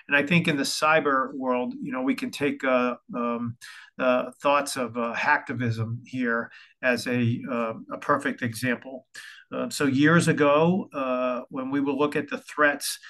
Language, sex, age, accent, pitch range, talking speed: English, male, 40-59, American, 125-150 Hz, 175 wpm